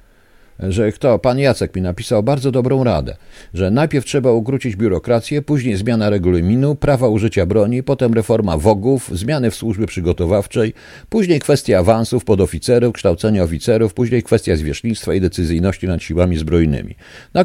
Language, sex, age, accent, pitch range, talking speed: Polish, male, 50-69, native, 90-135 Hz, 145 wpm